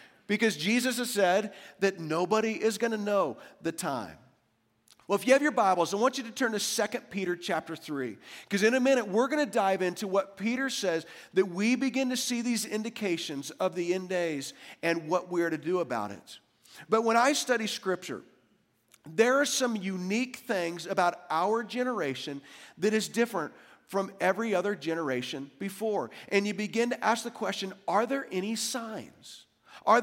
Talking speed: 185 wpm